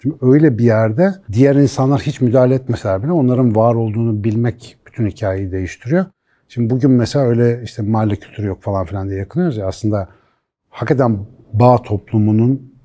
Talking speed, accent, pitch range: 160 wpm, native, 100-130 Hz